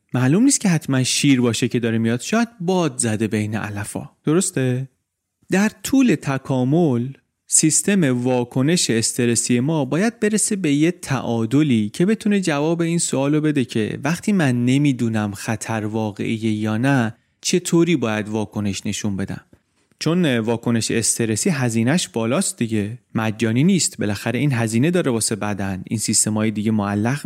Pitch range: 115-165 Hz